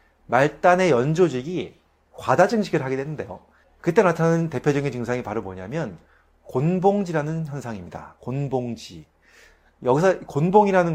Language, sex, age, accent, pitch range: Korean, male, 30-49, native, 115-180 Hz